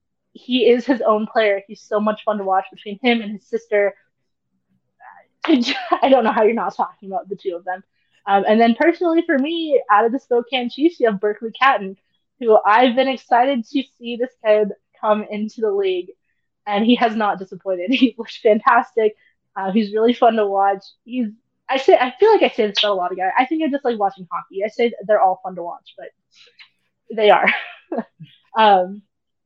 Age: 20-39